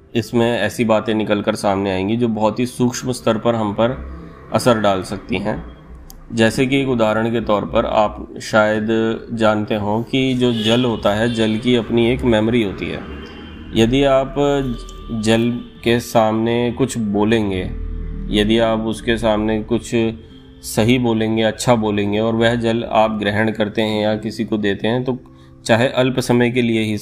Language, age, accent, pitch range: Hindi, 30-49, native, 100-120 Hz